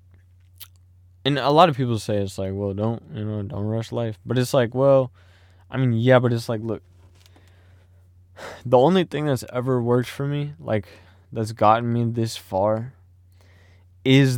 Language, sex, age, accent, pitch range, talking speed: English, male, 20-39, American, 90-120 Hz, 170 wpm